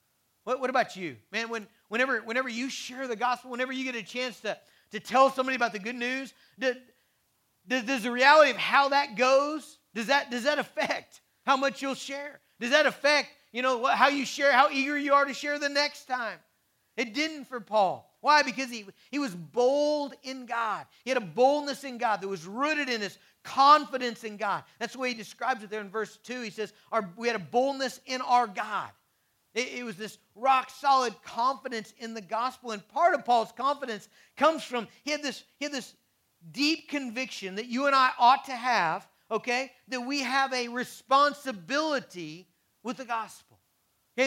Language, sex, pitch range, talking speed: English, male, 230-275 Hz, 195 wpm